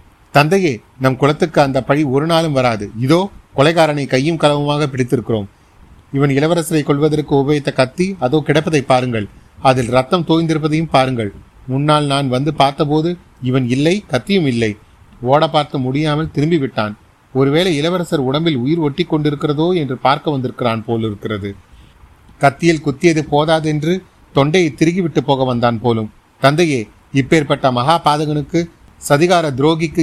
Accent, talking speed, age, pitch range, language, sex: native, 120 wpm, 30-49, 125-155 Hz, Tamil, male